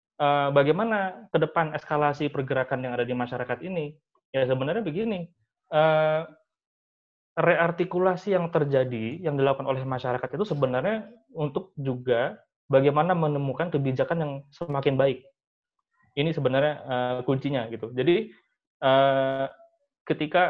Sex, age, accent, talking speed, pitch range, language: male, 20-39, native, 105 wpm, 130-170 Hz, Indonesian